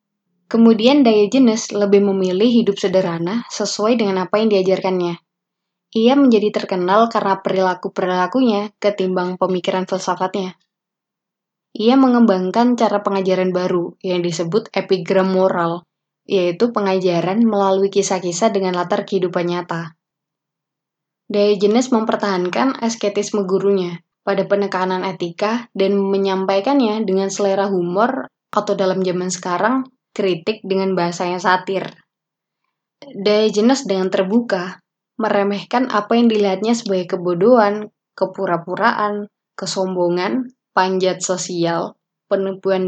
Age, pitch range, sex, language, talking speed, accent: 20-39, 185-210 Hz, female, Indonesian, 100 wpm, native